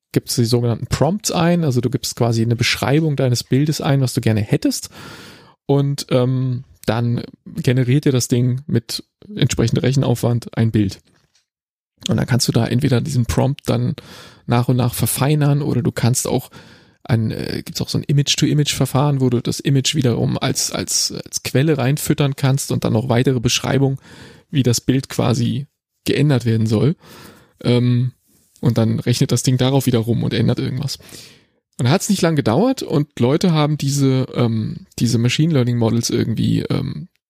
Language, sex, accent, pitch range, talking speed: German, male, German, 120-145 Hz, 170 wpm